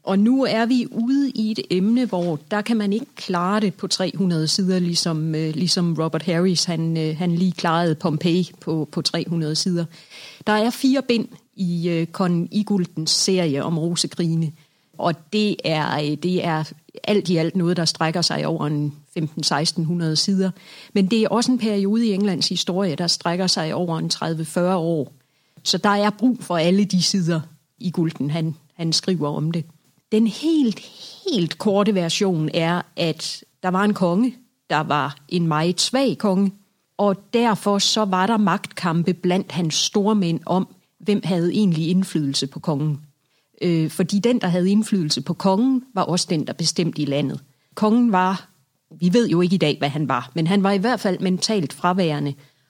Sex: female